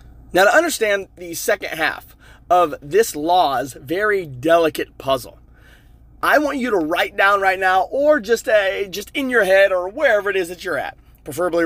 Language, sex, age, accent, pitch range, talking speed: English, male, 30-49, American, 150-215 Hz, 180 wpm